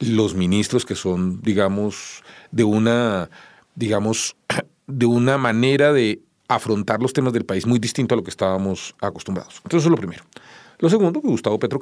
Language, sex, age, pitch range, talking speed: English, male, 40-59, 100-135 Hz, 175 wpm